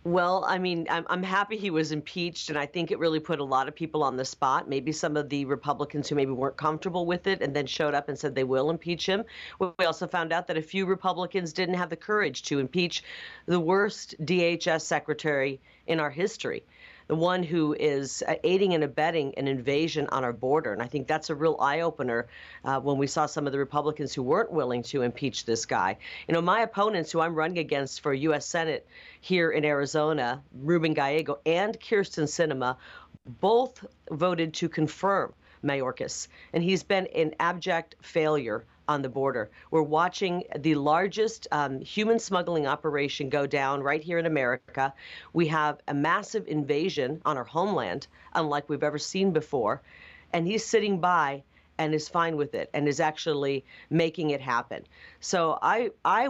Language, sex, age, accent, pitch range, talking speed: English, female, 40-59, American, 145-180 Hz, 190 wpm